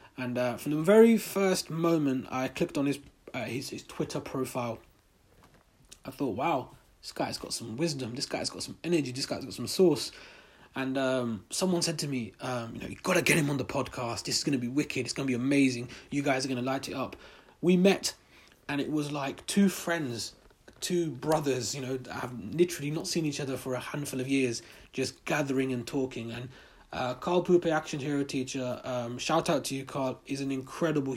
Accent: British